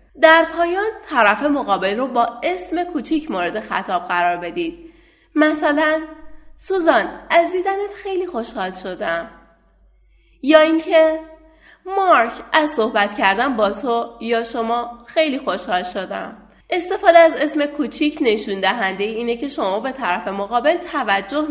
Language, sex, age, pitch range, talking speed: Persian, female, 30-49, 215-315 Hz, 125 wpm